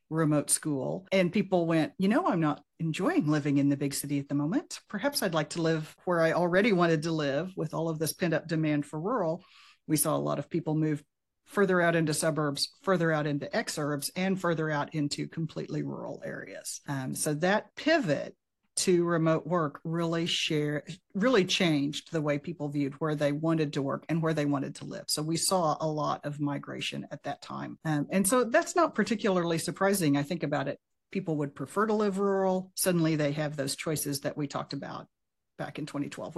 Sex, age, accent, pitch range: female, 40-59, American, 150-180 Hz